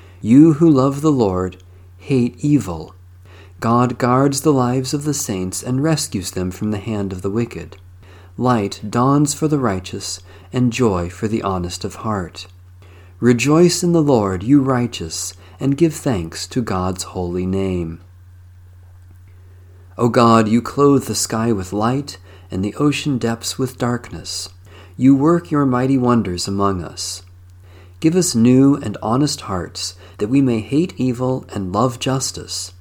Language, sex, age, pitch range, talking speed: English, male, 40-59, 90-135 Hz, 150 wpm